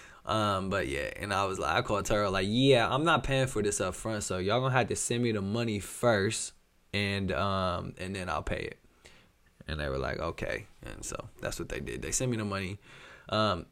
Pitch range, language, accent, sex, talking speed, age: 95-120 Hz, English, American, male, 230 wpm, 20-39